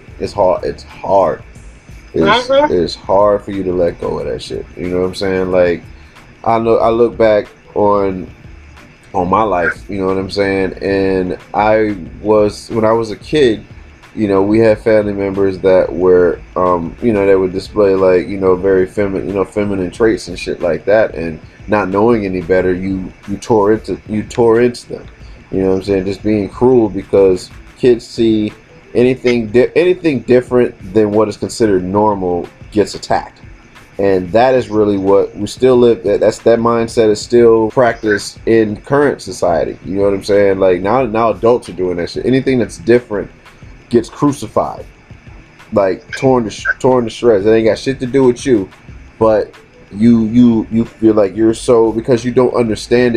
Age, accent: 30-49, American